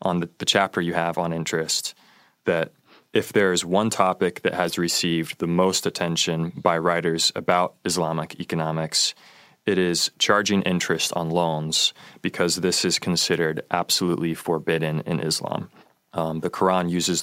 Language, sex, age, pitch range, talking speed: English, male, 20-39, 80-90 Hz, 150 wpm